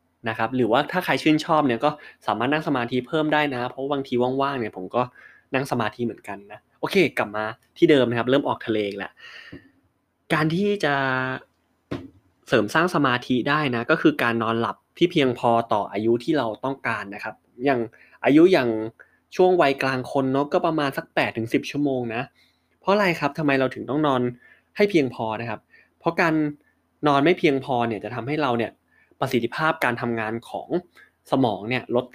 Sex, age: male, 20-39